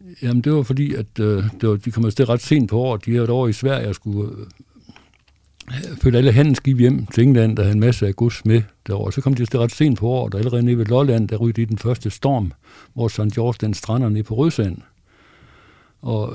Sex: male